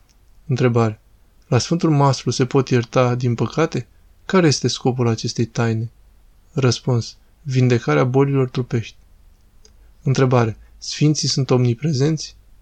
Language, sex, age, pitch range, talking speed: Romanian, male, 20-39, 115-135 Hz, 105 wpm